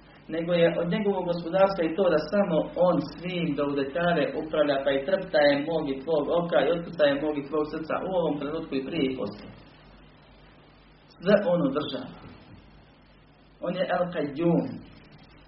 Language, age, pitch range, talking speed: Croatian, 40-59, 140-190 Hz, 145 wpm